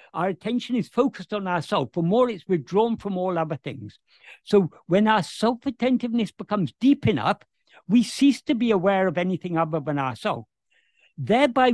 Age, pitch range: 60-79, 170-235 Hz